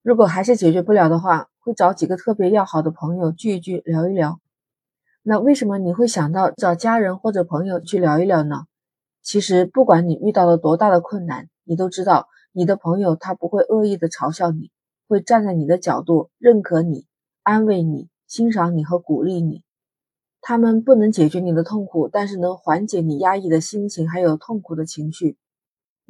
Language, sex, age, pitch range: Chinese, female, 20-39, 165-205 Hz